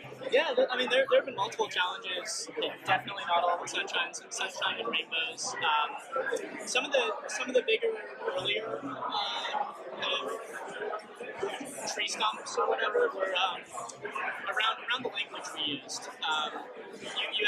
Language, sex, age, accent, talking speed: English, male, 20-39, American, 150 wpm